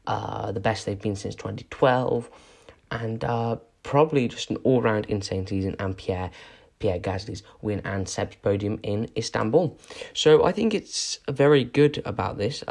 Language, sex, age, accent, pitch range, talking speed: English, male, 10-29, British, 100-150 Hz, 155 wpm